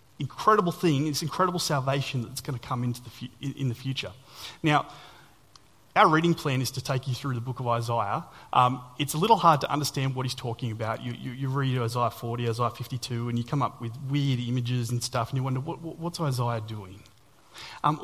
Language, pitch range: English, 125-165 Hz